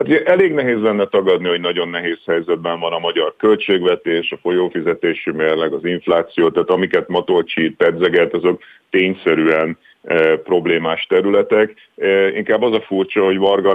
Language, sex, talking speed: Hungarian, male, 135 wpm